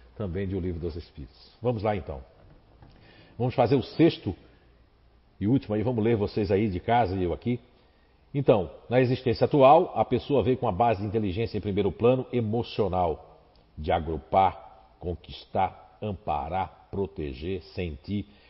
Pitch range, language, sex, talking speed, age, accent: 95-135 Hz, Portuguese, male, 150 wpm, 50-69, Brazilian